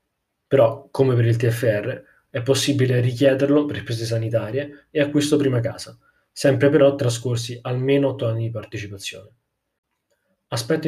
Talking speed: 130 wpm